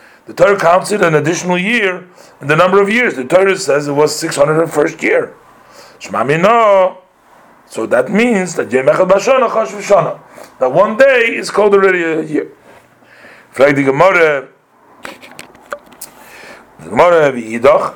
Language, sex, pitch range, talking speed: English, male, 135-195 Hz, 105 wpm